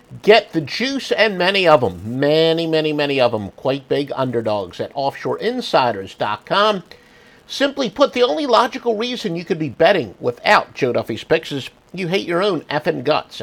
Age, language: 50-69, English